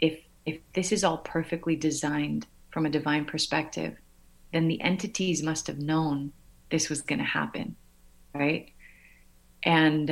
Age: 30-49